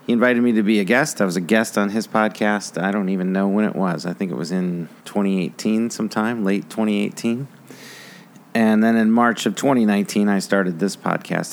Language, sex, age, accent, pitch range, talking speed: English, male, 40-59, American, 95-110 Hz, 210 wpm